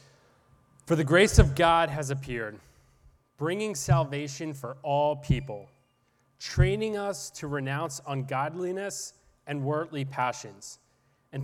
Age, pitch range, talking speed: 30-49, 130-155 Hz, 110 wpm